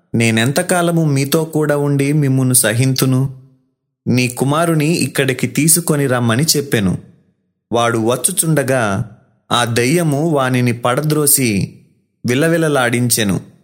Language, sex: Telugu, male